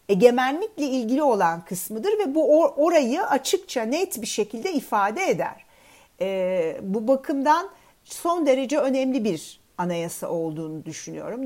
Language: Turkish